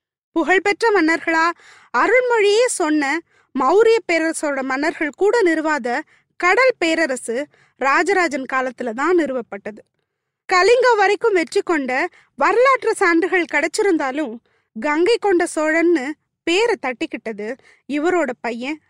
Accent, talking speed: native, 90 wpm